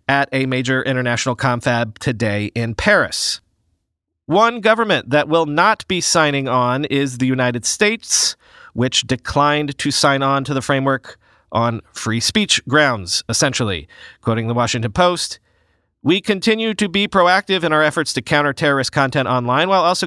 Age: 40-59